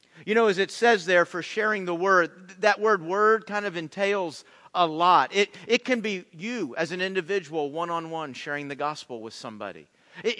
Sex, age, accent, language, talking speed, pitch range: male, 50-69, American, English, 200 wpm, 175-230 Hz